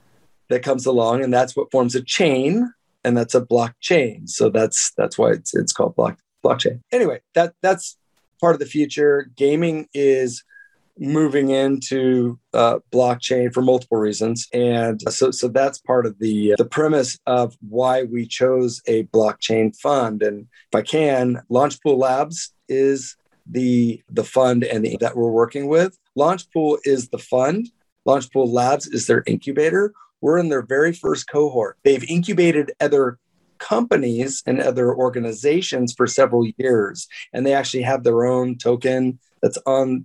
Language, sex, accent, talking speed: English, male, American, 155 wpm